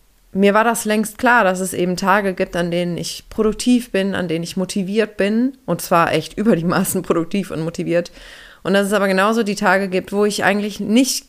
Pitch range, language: 165-200 Hz, German